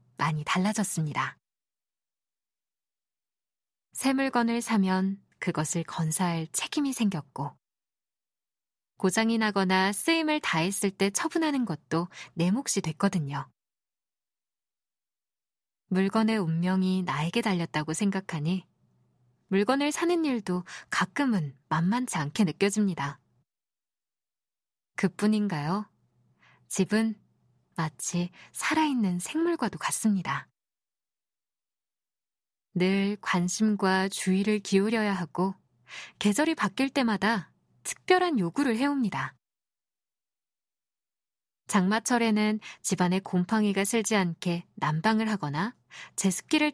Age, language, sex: 20-39, Korean, female